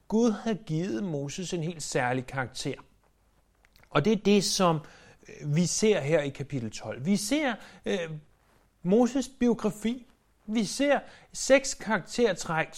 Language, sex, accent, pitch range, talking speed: Danish, male, native, 125-185 Hz, 130 wpm